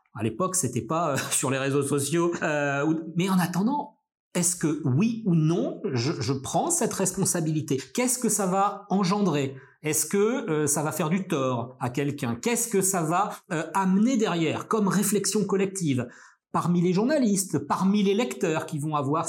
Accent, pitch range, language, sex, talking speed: French, 140-200 Hz, French, male, 185 wpm